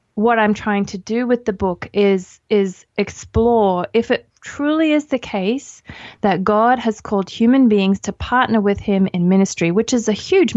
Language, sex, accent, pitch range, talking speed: English, female, Australian, 195-235 Hz, 185 wpm